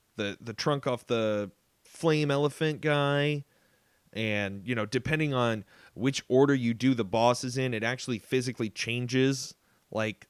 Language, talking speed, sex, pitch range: English, 145 wpm, male, 110-135 Hz